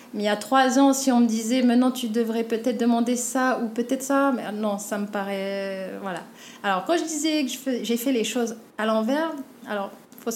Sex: female